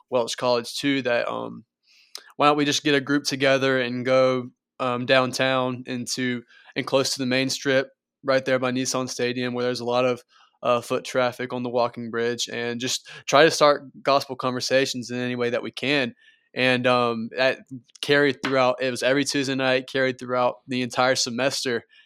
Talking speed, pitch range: 190 wpm, 125-140 Hz